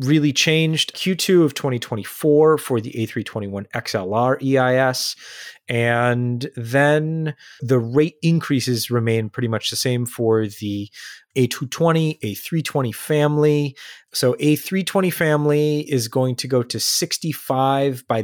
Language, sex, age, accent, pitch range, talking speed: English, male, 30-49, American, 115-150 Hz, 115 wpm